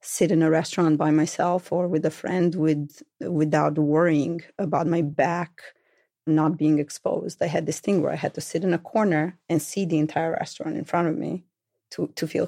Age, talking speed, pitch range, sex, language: 30-49, 205 wpm, 155-185 Hz, female, English